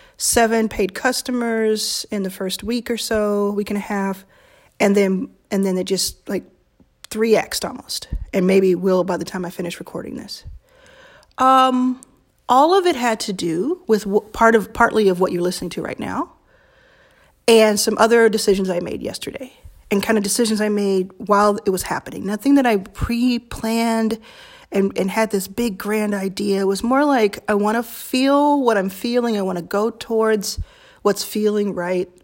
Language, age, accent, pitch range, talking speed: English, 40-59, American, 195-240 Hz, 180 wpm